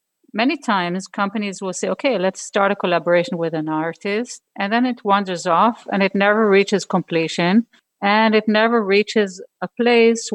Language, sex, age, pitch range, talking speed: English, female, 50-69, 175-210 Hz, 170 wpm